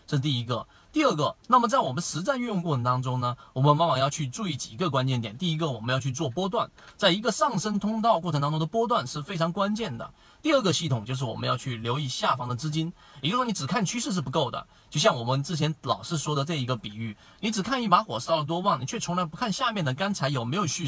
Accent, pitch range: native, 130-195 Hz